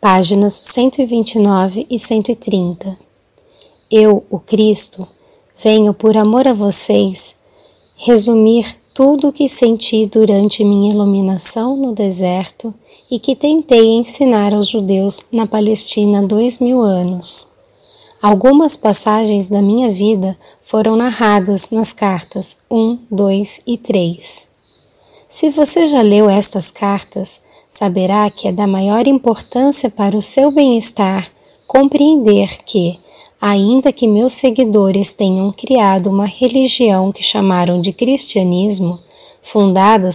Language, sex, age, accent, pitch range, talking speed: Portuguese, female, 10-29, Brazilian, 200-250 Hz, 115 wpm